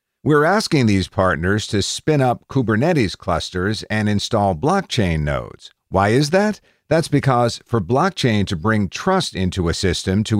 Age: 50-69